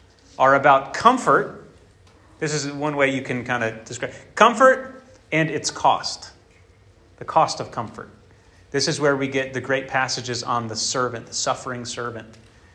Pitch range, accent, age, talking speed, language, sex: 110-165 Hz, American, 30-49, 165 wpm, English, male